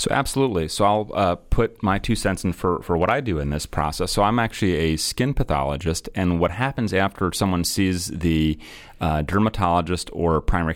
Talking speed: 195 wpm